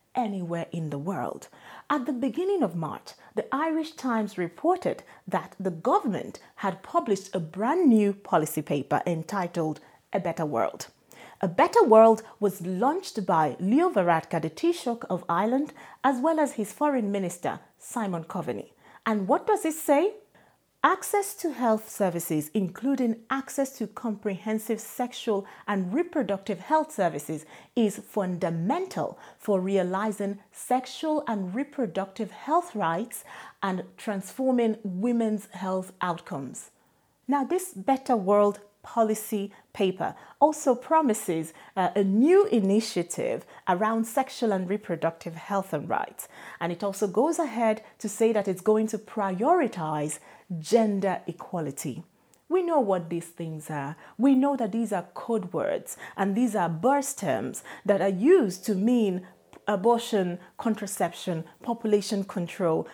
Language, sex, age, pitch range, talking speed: English, female, 30-49, 185-250 Hz, 135 wpm